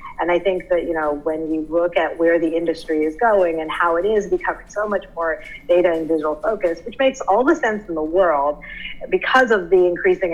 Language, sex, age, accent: English, female, 30-49, American